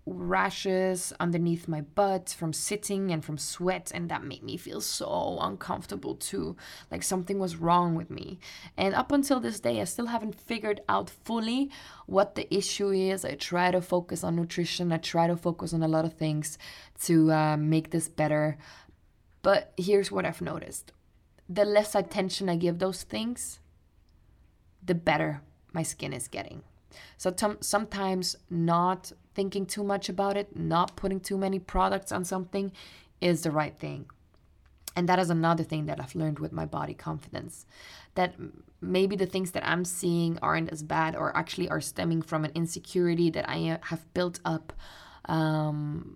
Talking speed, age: 170 wpm, 20-39